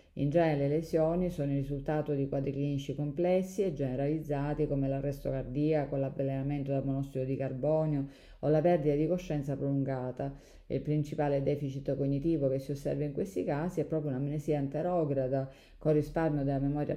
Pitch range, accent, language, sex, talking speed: 135-155 Hz, native, Italian, female, 160 wpm